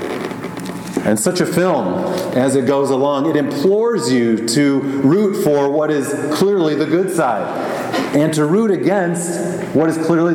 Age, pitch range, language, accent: 40-59, 125-170 Hz, English, American